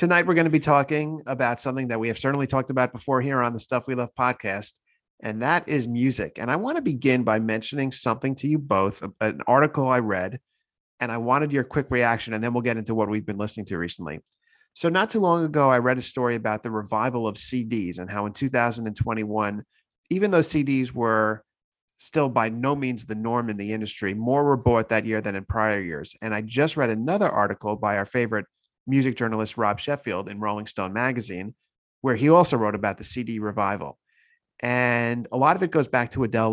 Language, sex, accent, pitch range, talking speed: English, male, American, 110-140 Hz, 215 wpm